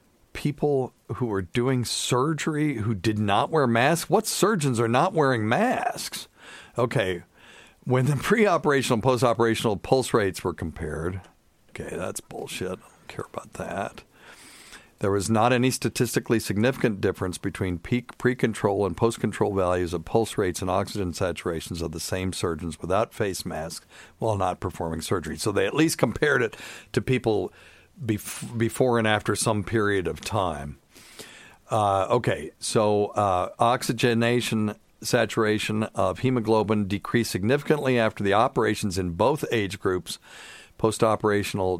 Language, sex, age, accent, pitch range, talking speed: English, male, 50-69, American, 95-120 Hz, 140 wpm